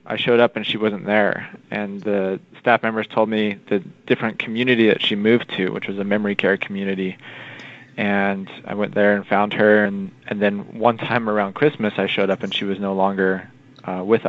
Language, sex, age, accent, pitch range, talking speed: English, male, 20-39, American, 100-115 Hz, 210 wpm